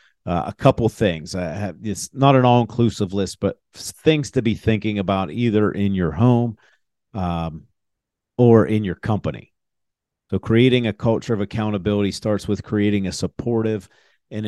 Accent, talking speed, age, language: American, 160 wpm, 50-69, English